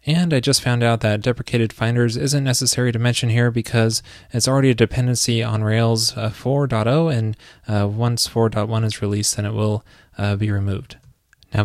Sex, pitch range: male, 110-130 Hz